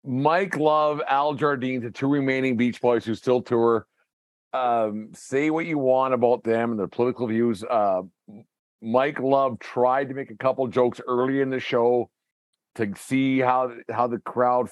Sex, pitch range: male, 115-135 Hz